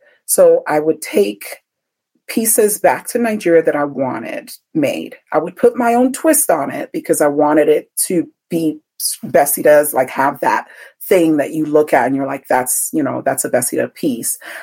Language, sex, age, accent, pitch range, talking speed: English, female, 40-59, American, 155-255 Hz, 190 wpm